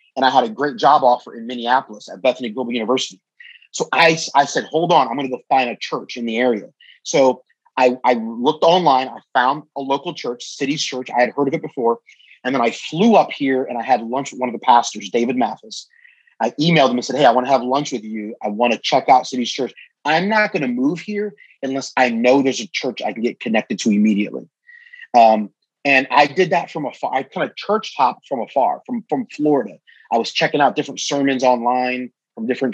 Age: 30-49